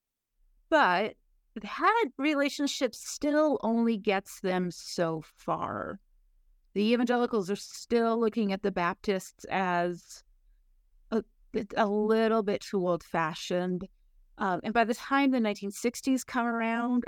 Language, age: English, 30-49